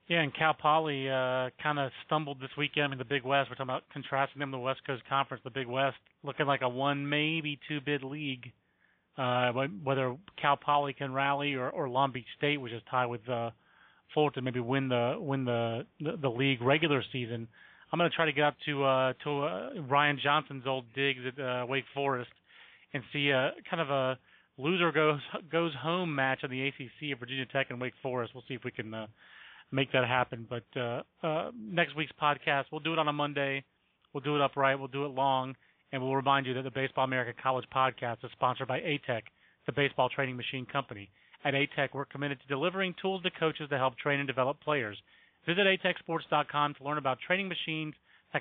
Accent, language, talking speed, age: American, English, 215 wpm, 40-59